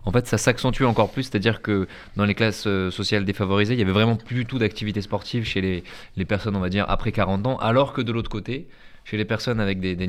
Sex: male